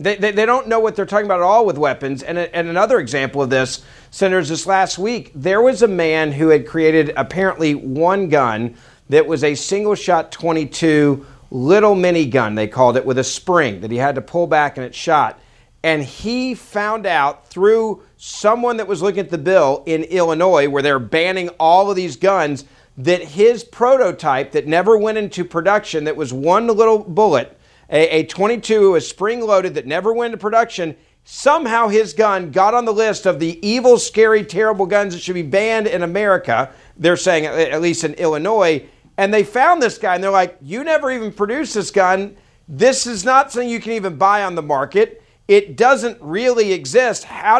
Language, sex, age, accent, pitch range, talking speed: English, male, 50-69, American, 160-220 Hz, 195 wpm